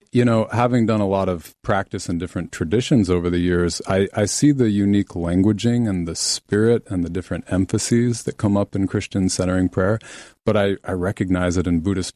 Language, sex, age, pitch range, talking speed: English, male, 40-59, 85-105 Hz, 200 wpm